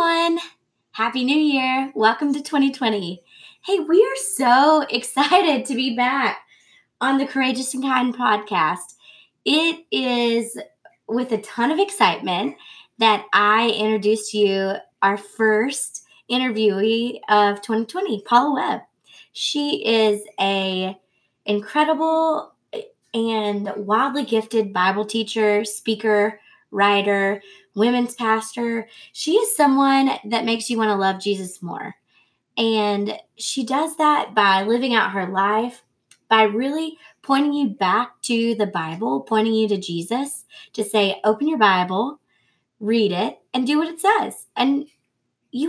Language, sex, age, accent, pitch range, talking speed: English, female, 20-39, American, 215-295 Hz, 125 wpm